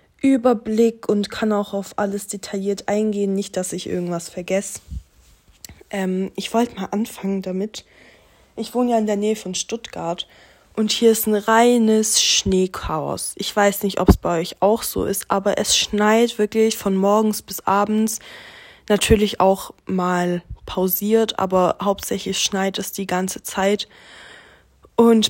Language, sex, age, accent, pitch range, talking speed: German, female, 20-39, German, 185-220 Hz, 150 wpm